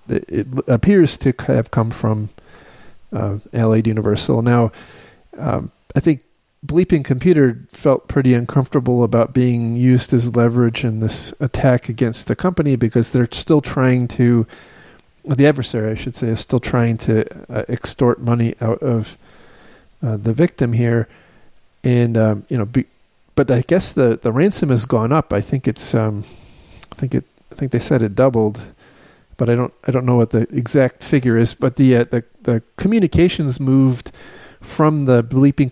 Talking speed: 170 wpm